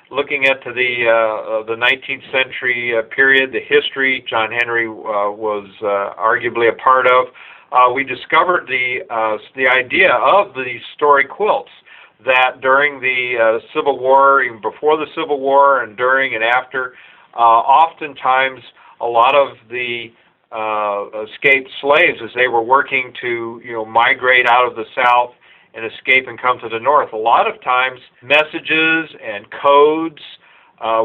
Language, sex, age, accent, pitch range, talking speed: English, male, 50-69, American, 115-135 Hz, 160 wpm